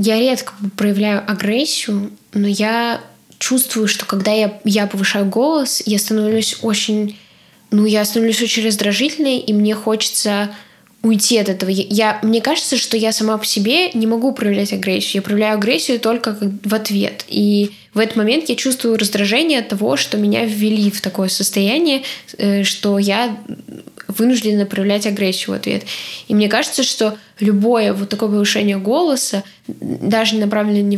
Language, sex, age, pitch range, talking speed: Russian, female, 10-29, 205-230 Hz, 155 wpm